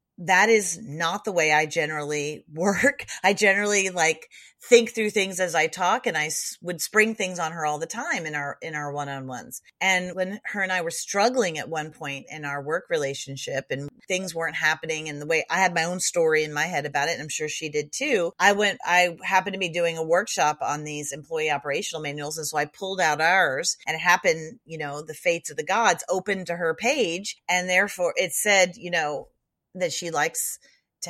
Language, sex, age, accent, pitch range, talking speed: English, female, 40-59, American, 150-210 Hz, 220 wpm